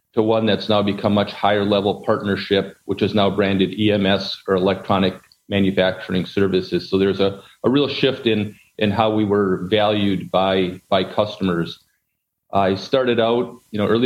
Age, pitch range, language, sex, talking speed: 40-59, 100-110 Hz, English, male, 165 wpm